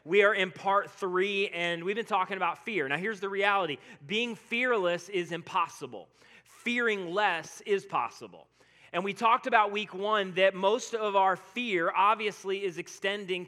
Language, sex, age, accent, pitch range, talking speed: English, male, 30-49, American, 185-220 Hz, 165 wpm